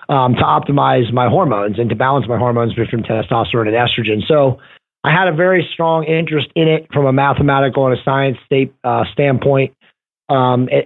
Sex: male